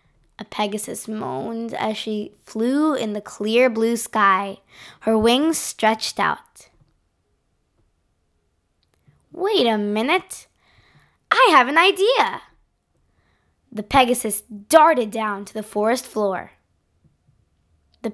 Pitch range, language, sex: 200-280 Hz, English, female